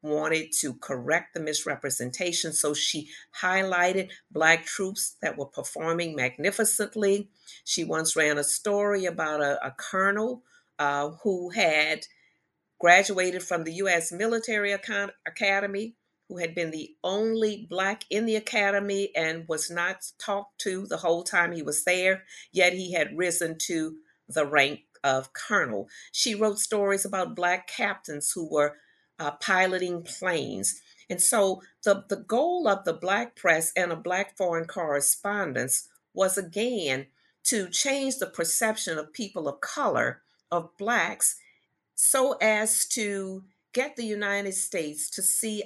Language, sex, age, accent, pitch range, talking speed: English, female, 50-69, American, 160-200 Hz, 140 wpm